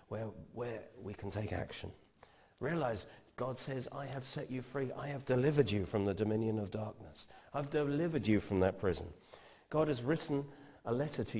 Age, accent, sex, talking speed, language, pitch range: 40-59, British, male, 180 wpm, English, 105-145 Hz